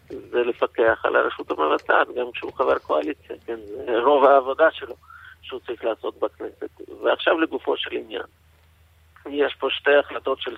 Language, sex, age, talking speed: Hebrew, male, 50-69, 145 wpm